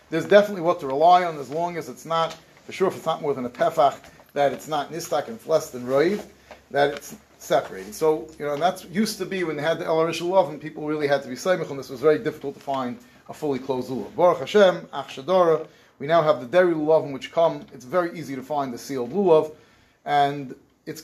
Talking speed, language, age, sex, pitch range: 240 wpm, English, 30-49, male, 145-195 Hz